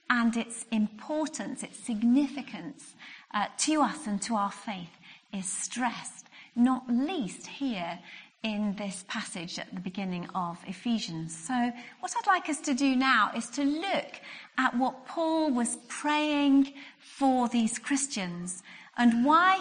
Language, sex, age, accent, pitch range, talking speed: English, female, 40-59, British, 210-285 Hz, 140 wpm